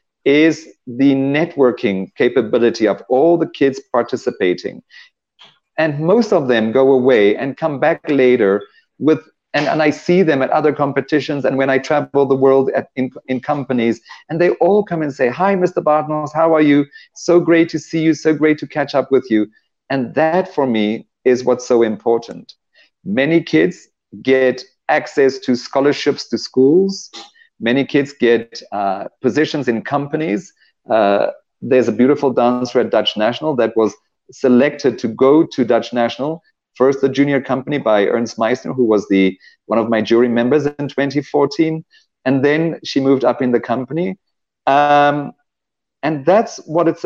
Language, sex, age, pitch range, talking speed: English, male, 40-59, 125-160 Hz, 165 wpm